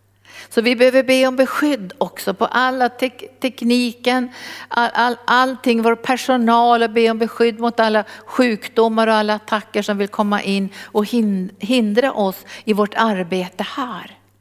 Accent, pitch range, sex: native, 195-235 Hz, female